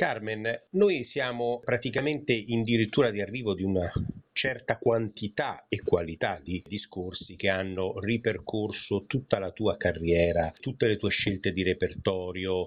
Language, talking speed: Italian, 135 wpm